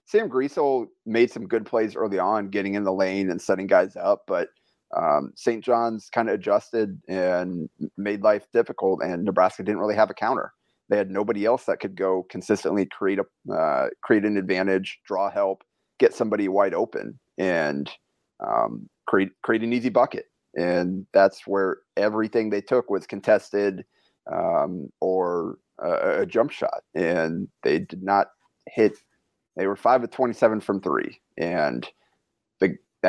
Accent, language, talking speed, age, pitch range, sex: American, English, 165 wpm, 30-49, 95-120 Hz, male